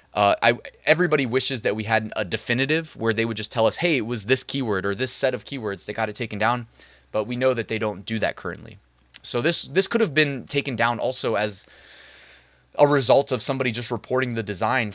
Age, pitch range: 20-39, 105-135 Hz